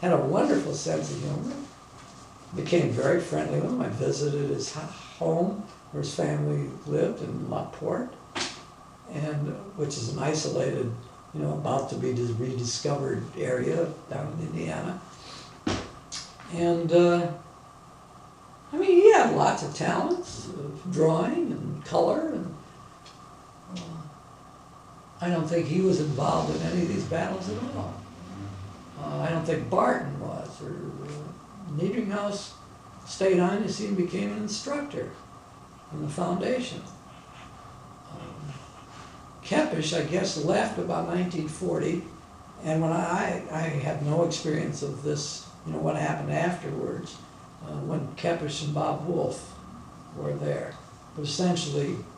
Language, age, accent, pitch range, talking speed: English, 60-79, American, 140-175 Hz, 130 wpm